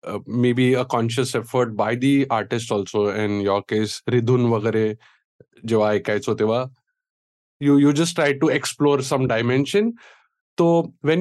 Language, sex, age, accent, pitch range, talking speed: English, male, 20-39, Indian, 115-150 Hz, 130 wpm